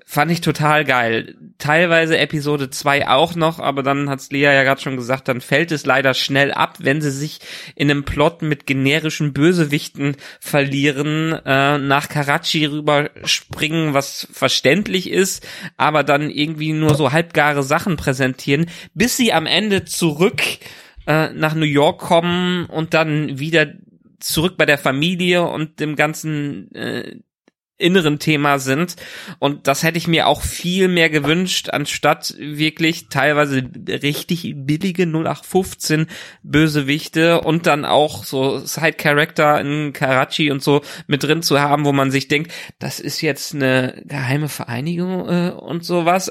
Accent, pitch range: German, 145-170 Hz